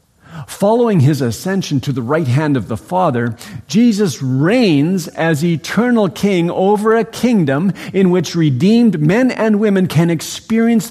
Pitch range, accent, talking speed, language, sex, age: 110-175 Hz, American, 145 wpm, English, male, 50-69